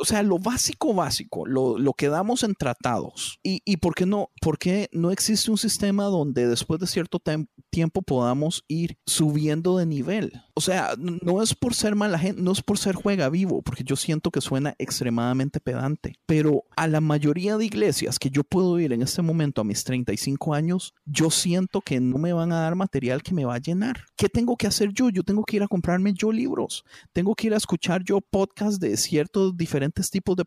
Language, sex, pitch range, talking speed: Spanish, male, 145-195 Hz, 215 wpm